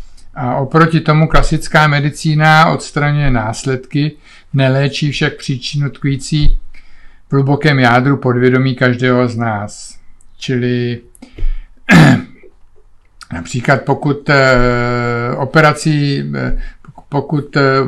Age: 50-69